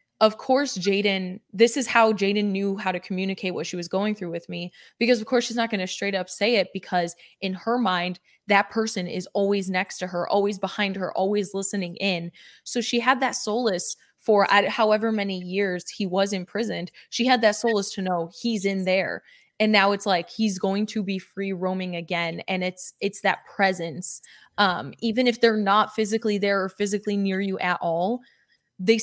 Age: 20-39